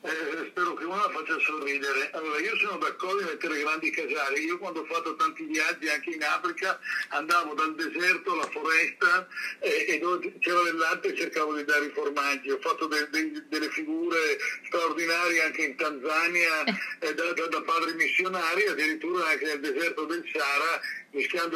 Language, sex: Italian, male